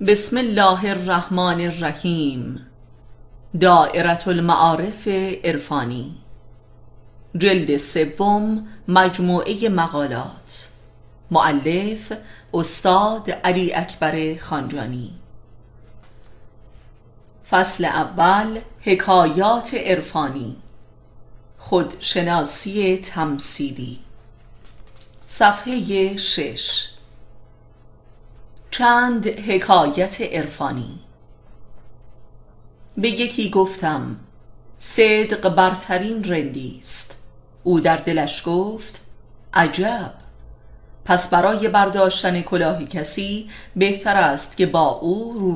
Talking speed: 65 wpm